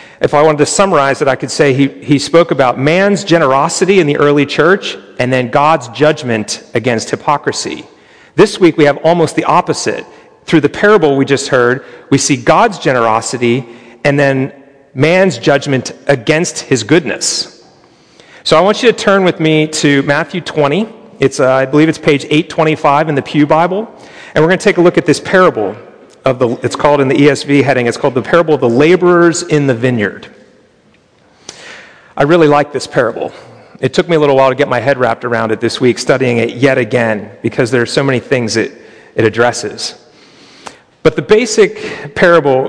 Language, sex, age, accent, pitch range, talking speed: English, male, 40-59, American, 130-165 Hz, 190 wpm